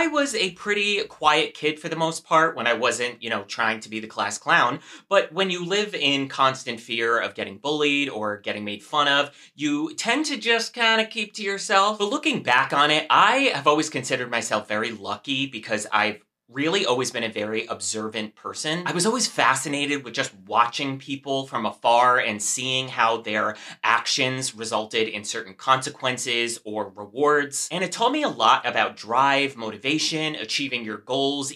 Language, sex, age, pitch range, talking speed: English, male, 30-49, 120-165 Hz, 190 wpm